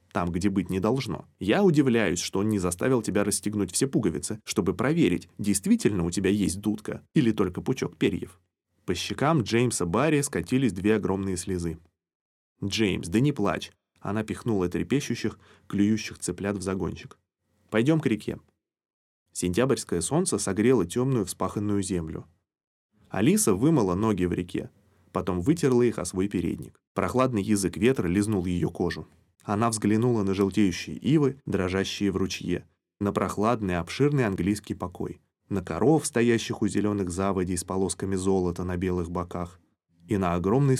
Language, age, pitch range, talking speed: Russian, 20-39, 90-110 Hz, 145 wpm